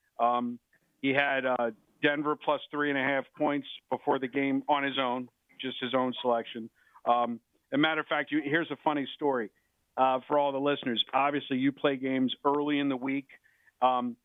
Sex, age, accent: male, 50-69, American